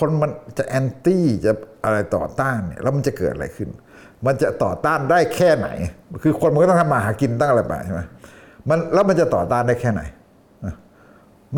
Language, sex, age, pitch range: Thai, male, 60-79, 105-145 Hz